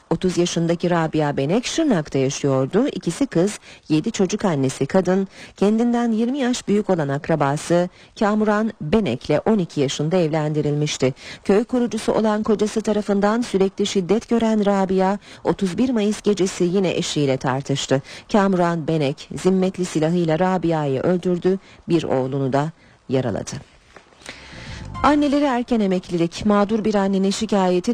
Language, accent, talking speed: Turkish, native, 120 wpm